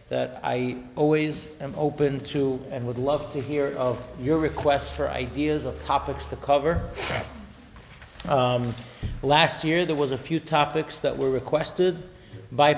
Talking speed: 150 wpm